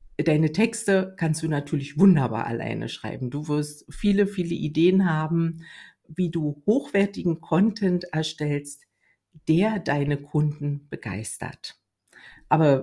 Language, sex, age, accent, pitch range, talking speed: German, female, 50-69, German, 140-175 Hz, 110 wpm